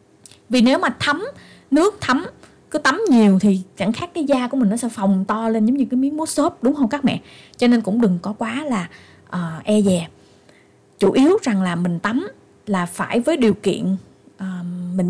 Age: 20-39